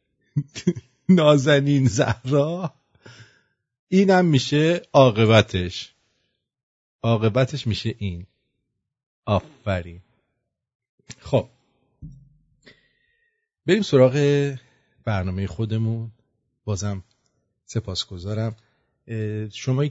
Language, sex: English, male